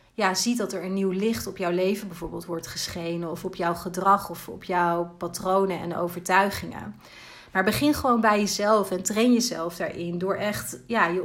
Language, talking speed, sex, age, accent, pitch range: Dutch, 190 wpm, female, 30-49, Dutch, 180-210 Hz